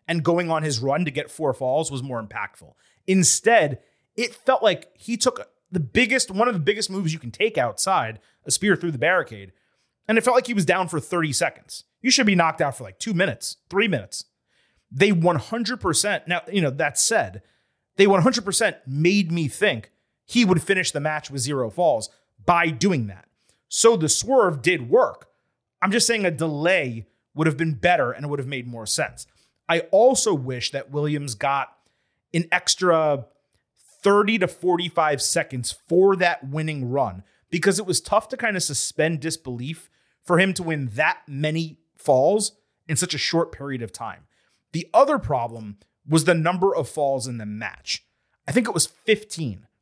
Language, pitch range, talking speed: English, 135-190 Hz, 185 wpm